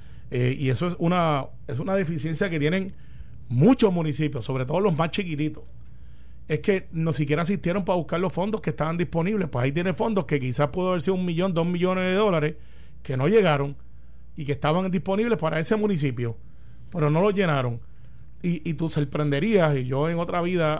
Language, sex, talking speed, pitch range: Spanish, male, 195 wpm, 135-190 Hz